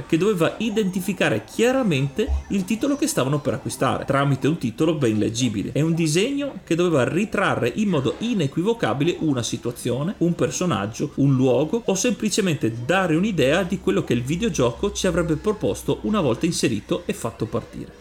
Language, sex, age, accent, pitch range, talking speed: Italian, male, 30-49, native, 125-195 Hz, 160 wpm